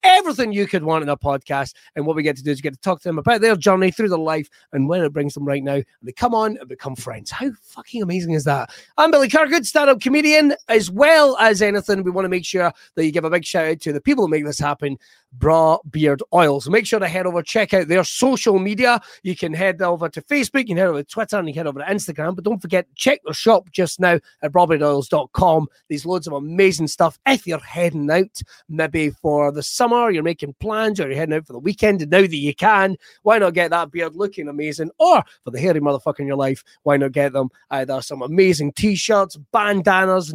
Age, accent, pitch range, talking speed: 30-49, British, 145-200 Hz, 250 wpm